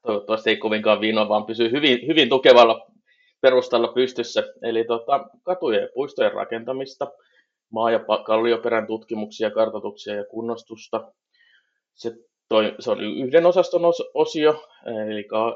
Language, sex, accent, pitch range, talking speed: Finnish, male, native, 110-170 Hz, 120 wpm